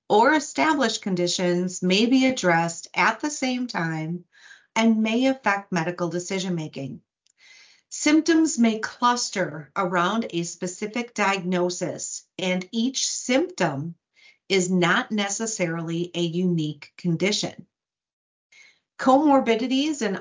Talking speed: 100 wpm